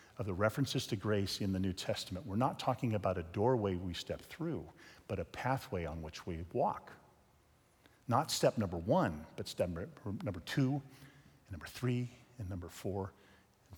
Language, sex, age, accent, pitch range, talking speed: English, male, 40-59, American, 100-125 Hz, 170 wpm